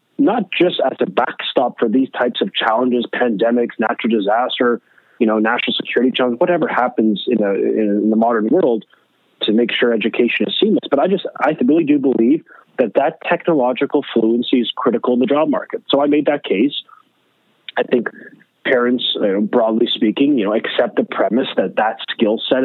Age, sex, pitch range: 30-49, male, 115-145 Hz